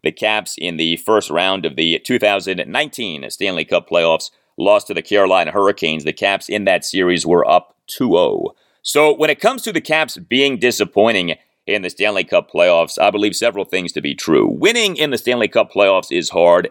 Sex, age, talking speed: male, 30-49, 195 wpm